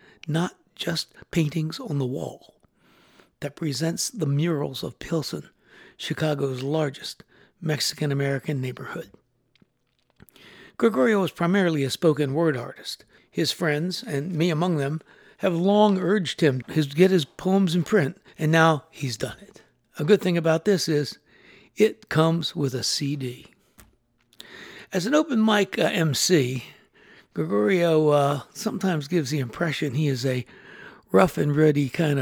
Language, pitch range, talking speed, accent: English, 140-180 Hz, 135 wpm, American